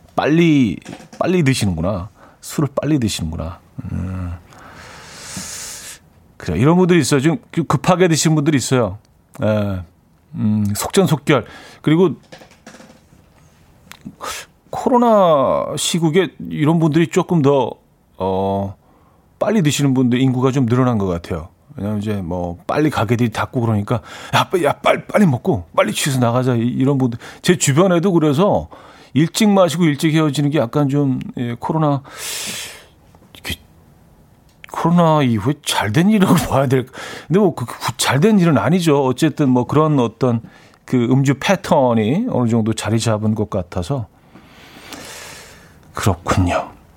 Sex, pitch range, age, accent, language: male, 105-155 Hz, 40-59, native, Korean